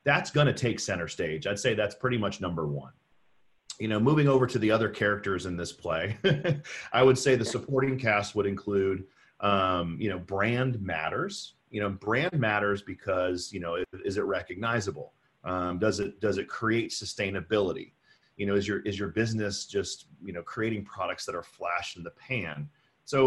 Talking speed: 190 wpm